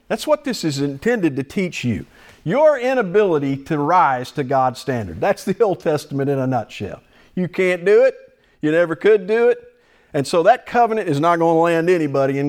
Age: 50-69